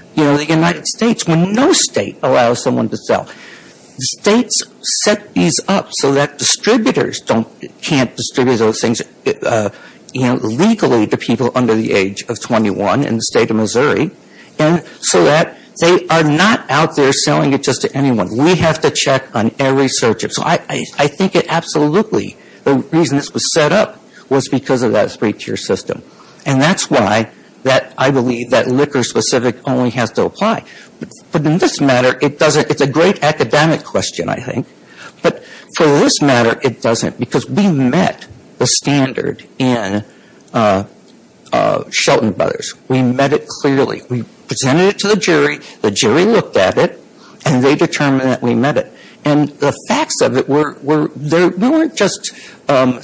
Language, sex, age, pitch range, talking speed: English, male, 60-79, 125-165 Hz, 175 wpm